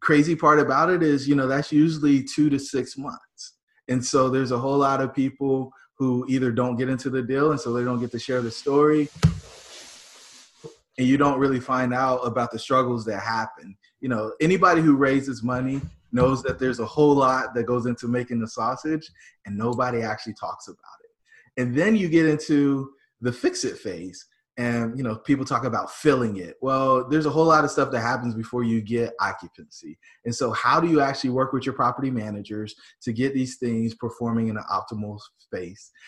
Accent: American